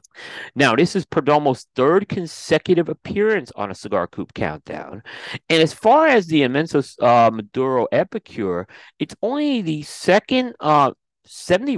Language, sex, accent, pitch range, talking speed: English, male, American, 110-170 Hz, 140 wpm